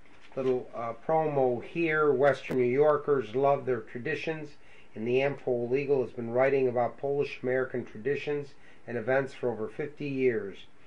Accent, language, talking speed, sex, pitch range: American, English, 150 wpm, male, 125-145 Hz